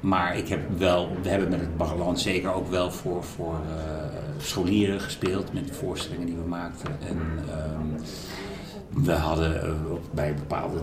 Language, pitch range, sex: Dutch, 90-135 Hz, male